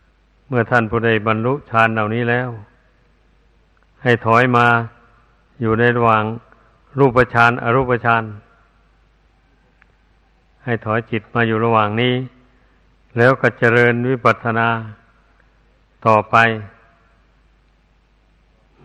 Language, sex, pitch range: Thai, male, 115-120 Hz